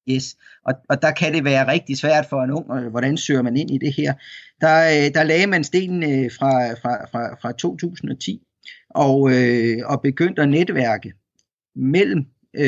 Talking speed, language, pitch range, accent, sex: 165 wpm, Danish, 120-150 Hz, native, male